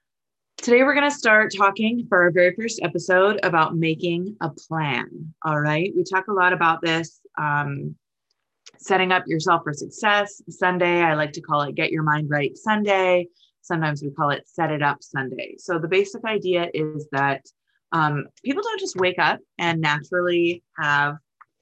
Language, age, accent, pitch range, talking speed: English, 20-39, American, 160-200 Hz, 175 wpm